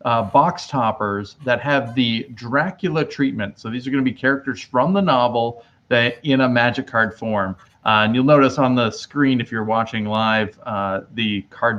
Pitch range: 105-140 Hz